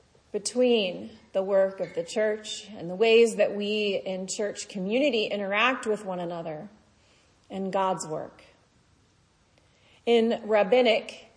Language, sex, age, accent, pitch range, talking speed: English, female, 30-49, American, 195-255 Hz, 120 wpm